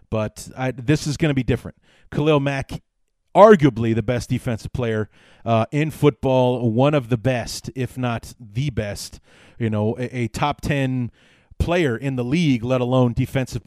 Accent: American